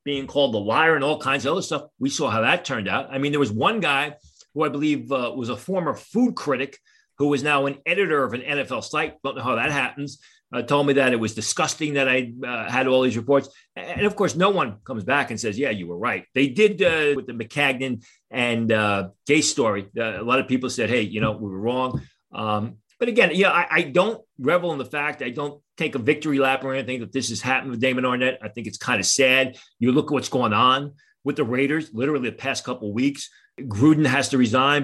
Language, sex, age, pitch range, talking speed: English, male, 40-59, 125-150 Hz, 250 wpm